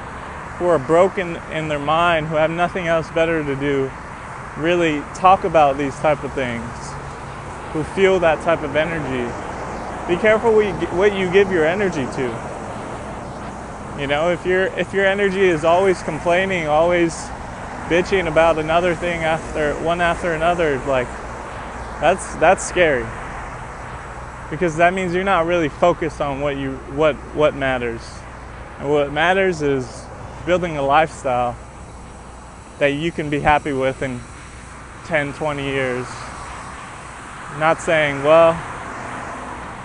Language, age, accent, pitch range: English, 20-39, American, 140-175 Hz